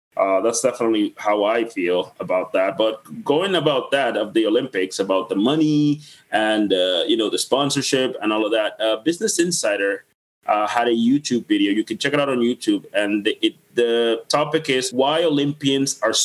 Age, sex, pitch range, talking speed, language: 30-49, male, 115-175 Hz, 185 wpm, English